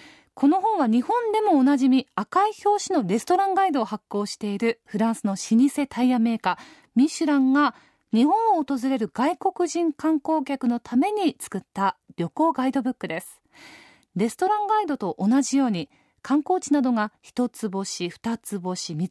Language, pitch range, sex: Japanese, 205-300 Hz, female